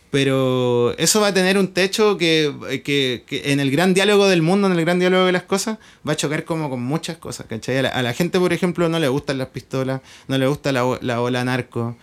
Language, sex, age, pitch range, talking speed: Spanish, male, 20-39, 130-175 Hz, 250 wpm